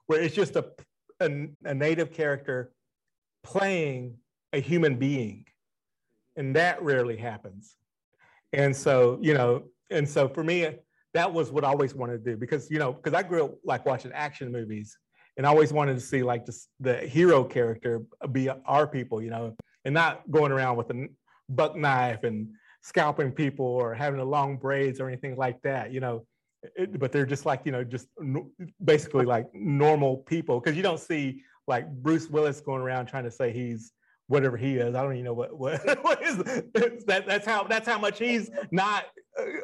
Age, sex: 40-59, male